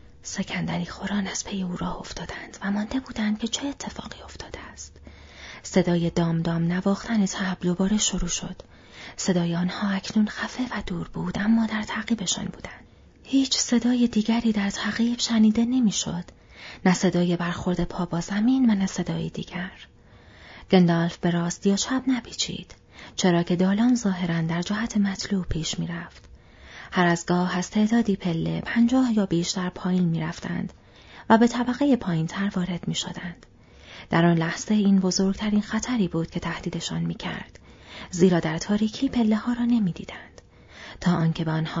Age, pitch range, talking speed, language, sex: 30-49, 170-215 Hz, 160 wpm, Persian, female